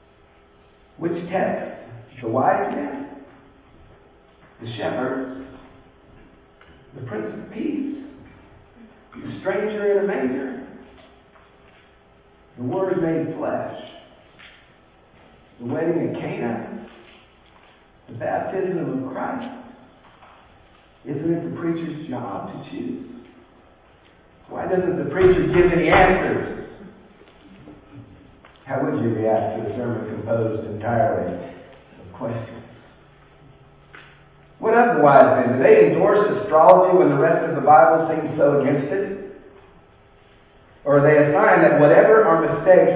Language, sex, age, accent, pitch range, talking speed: English, male, 50-69, American, 110-170 Hz, 110 wpm